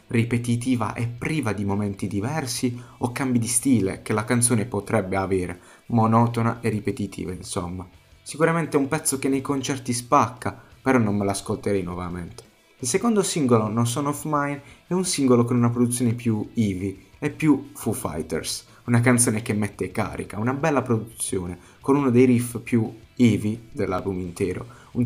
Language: Italian